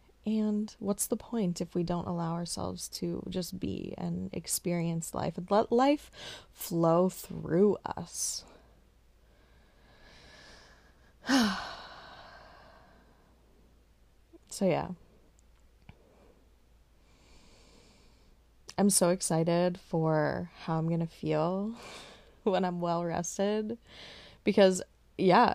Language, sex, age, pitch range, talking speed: English, female, 20-39, 170-225 Hz, 90 wpm